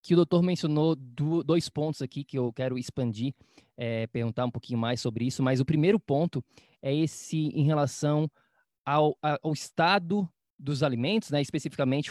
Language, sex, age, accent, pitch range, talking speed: Portuguese, male, 20-39, Brazilian, 130-160 Hz, 160 wpm